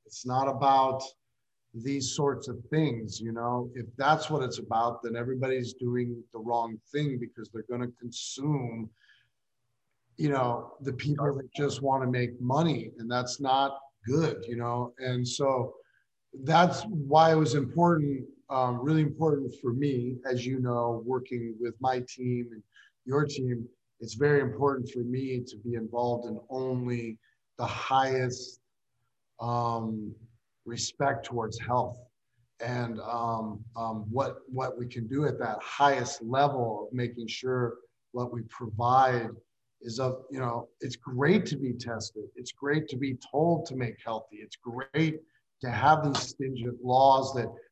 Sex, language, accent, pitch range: male, English, American, 120-135 Hz